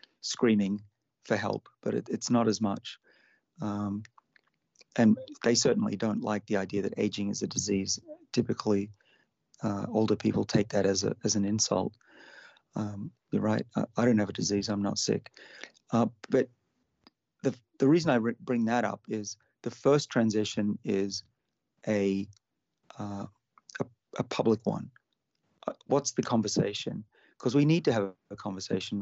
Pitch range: 100-115 Hz